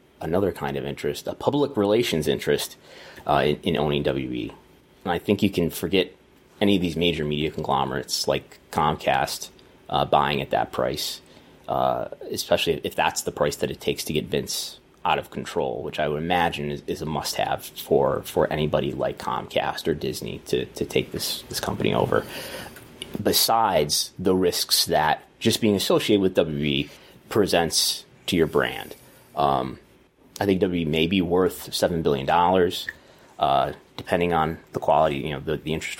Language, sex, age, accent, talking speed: English, male, 30-49, American, 170 wpm